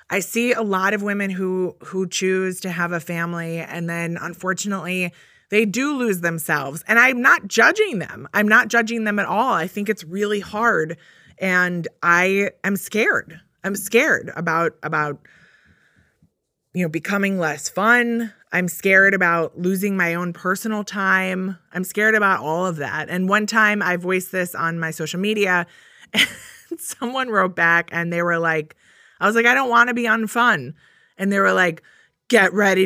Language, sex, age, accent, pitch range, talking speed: English, female, 20-39, American, 170-210 Hz, 175 wpm